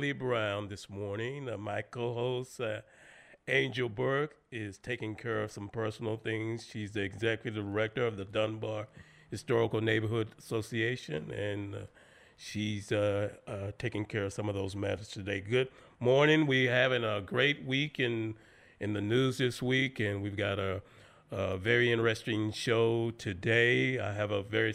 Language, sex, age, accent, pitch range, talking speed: English, male, 40-59, American, 105-125 Hz, 160 wpm